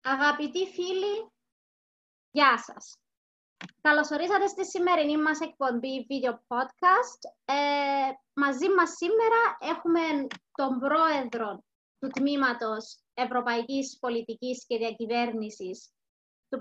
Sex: female